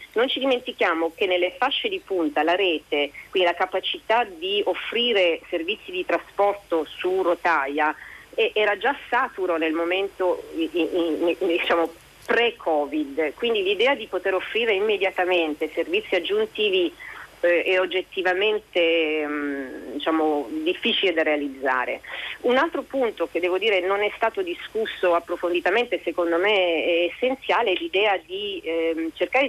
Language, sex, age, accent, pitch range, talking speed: Italian, female, 40-59, native, 170-275 Hz, 130 wpm